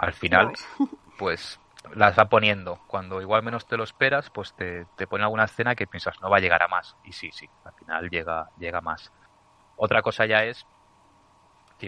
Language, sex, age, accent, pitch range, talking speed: Spanish, male, 30-49, Spanish, 90-110 Hz, 195 wpm